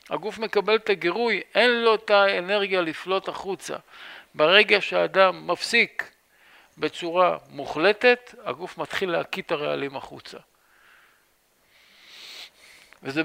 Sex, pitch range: male, 150-190 Hz